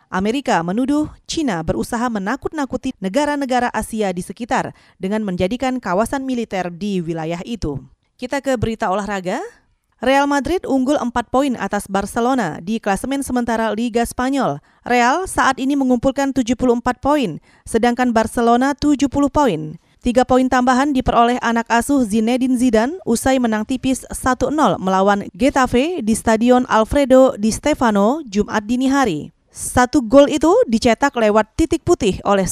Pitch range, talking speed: 210-270 Hz, 135 wpm